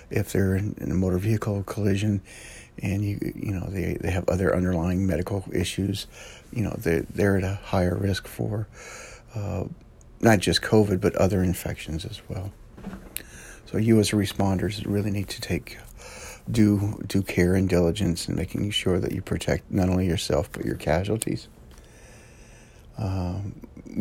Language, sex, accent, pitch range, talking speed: English, male, American, 90-105 Hz, 155 wpm